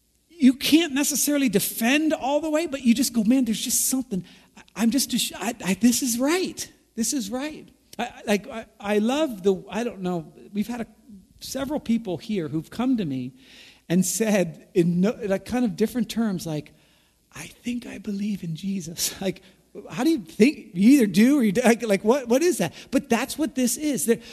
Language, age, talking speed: English, 40-59, 200 wpm